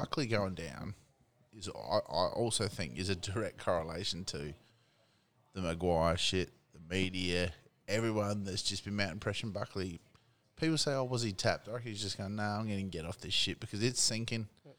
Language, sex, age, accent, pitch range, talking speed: English, male, 20-39, Australian, 100-130 Hz, 195 wpm